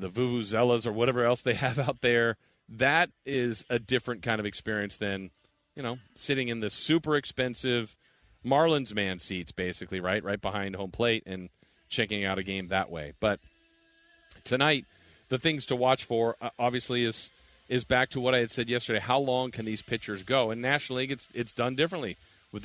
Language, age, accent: English, 40-59, American